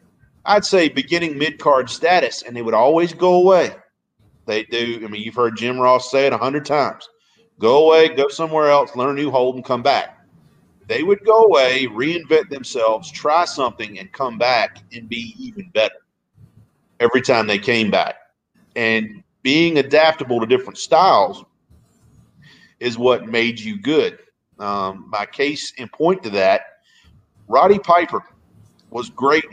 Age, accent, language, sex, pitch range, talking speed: 40-59, American, English, male, 115-165 Hz, 160 wpm